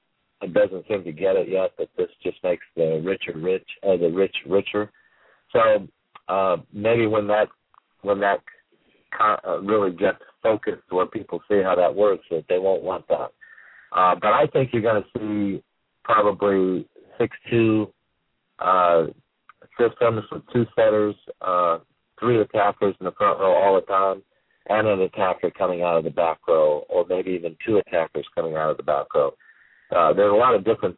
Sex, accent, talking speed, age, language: male, American, 175 wpm, 40-59, English